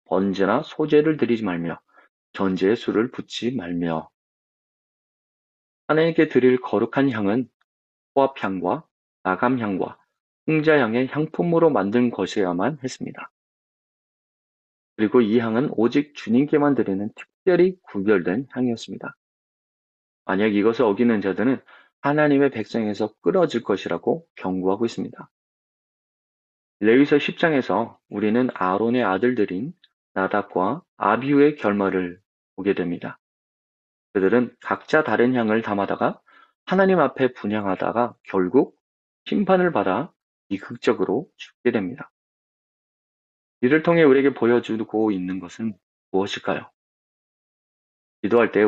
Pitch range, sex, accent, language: 95-140 Hz, male, native, Korean